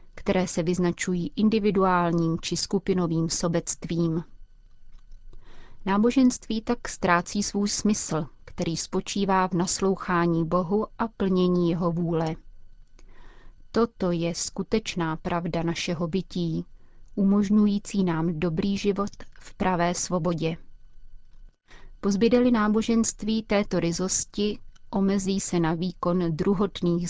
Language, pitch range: Czech, 170-195 Hz